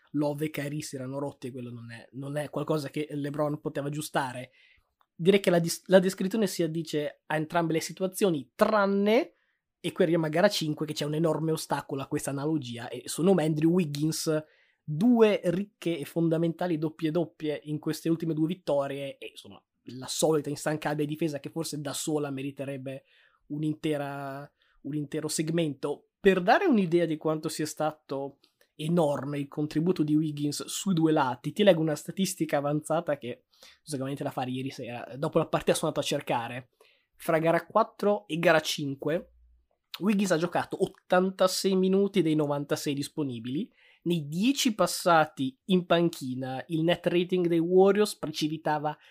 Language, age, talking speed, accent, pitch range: Italian, 20-39, 160 wpm, native, 145-170 Hz